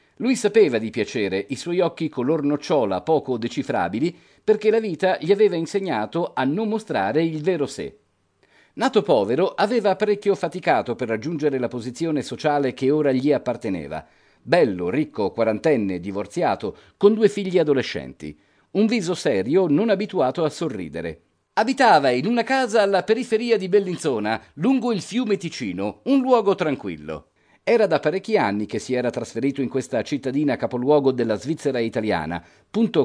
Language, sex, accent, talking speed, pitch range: Italian, male, native, 150 wpm, 125-195 Hz